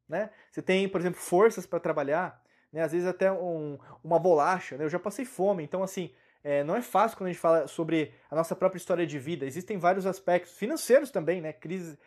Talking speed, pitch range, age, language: 210 wpm, 150-200 Hz, 20-39, Portuguese